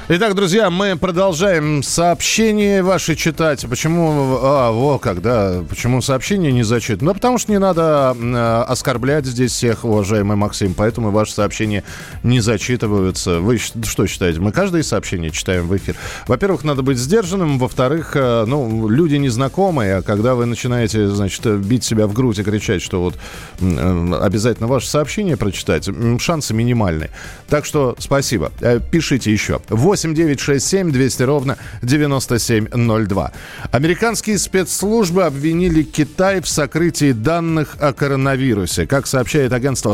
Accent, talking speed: native, 140 wpm